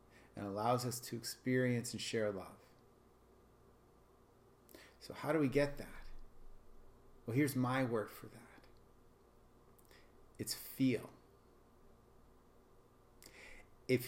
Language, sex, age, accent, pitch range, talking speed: English, male, 30-49, American, 120-150 Hz, 100 wpm